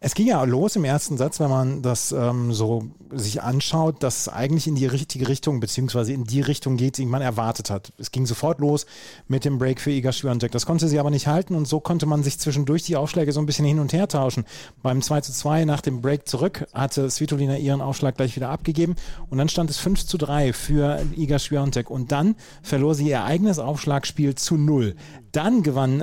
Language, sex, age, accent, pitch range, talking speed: German, male, 30-49, German, 130-160 Hz, 225 wpm